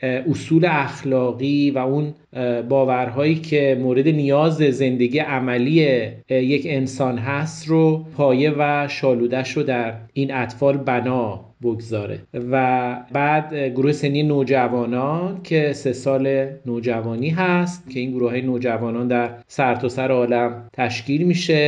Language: Persian